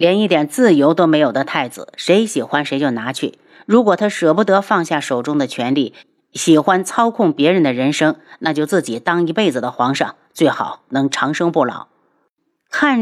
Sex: female